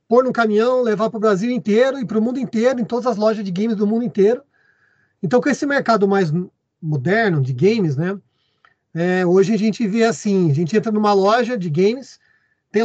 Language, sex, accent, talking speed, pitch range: Portuguese, male, Brazilian, 210 wpm, 170-225 Hz